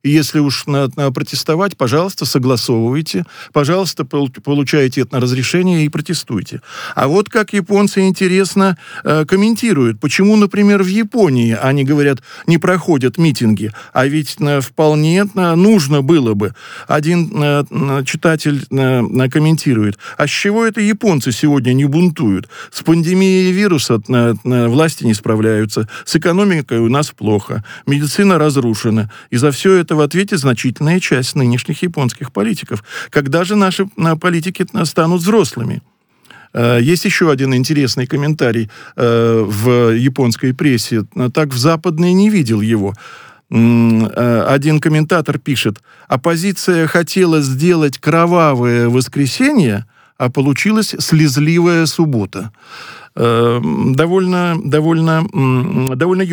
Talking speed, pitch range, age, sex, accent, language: 105 wpm, 125-175 Hz, 50-69, male, native, Russian